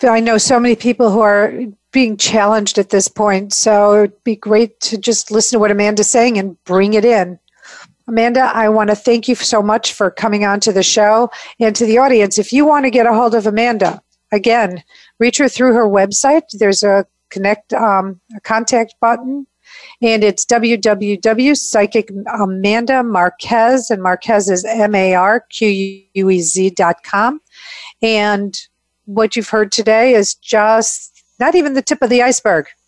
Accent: American